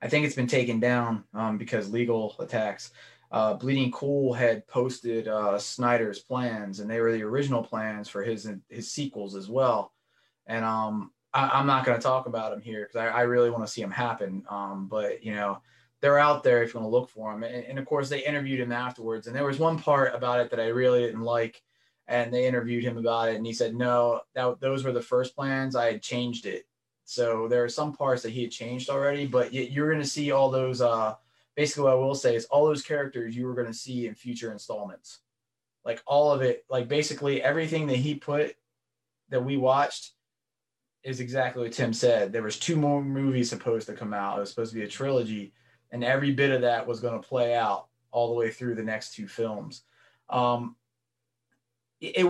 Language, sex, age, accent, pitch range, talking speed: English, male, 20-39, American, 115-135 Hz, 220 wpm